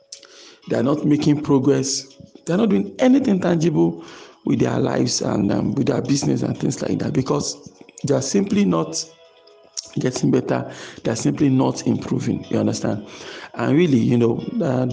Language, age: English, 50-69